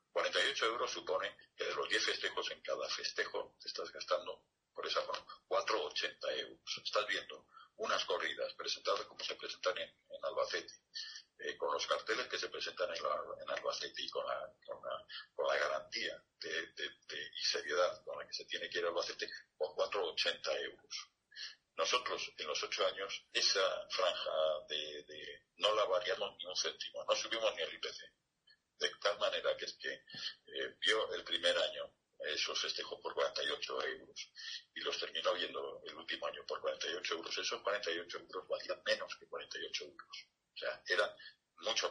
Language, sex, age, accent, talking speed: Spanish, male, 50-69, Spanish, 180 wpm